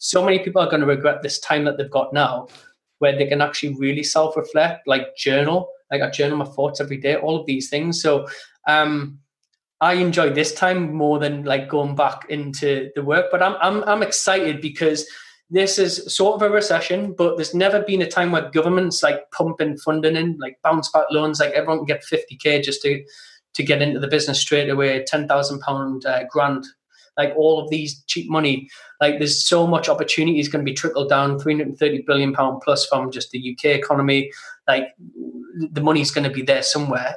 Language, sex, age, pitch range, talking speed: English, male, 20-39, 140-165 Hz, 205 wpm